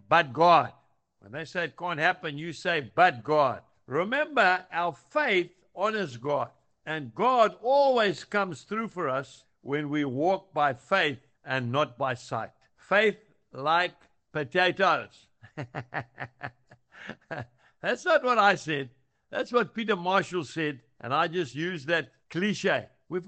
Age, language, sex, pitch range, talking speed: 60-79, English, male, 150-215 Hz, 135 wpm